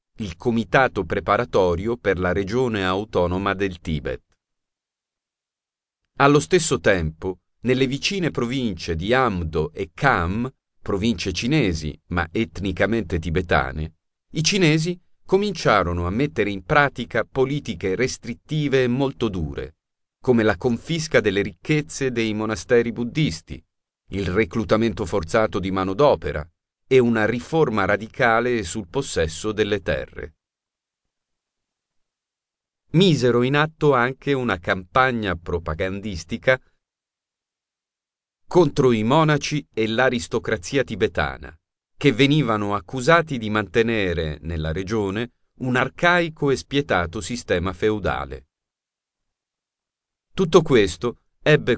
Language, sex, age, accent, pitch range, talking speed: Italian, male, 40-59, native, 95-130 Hz, 100 wpm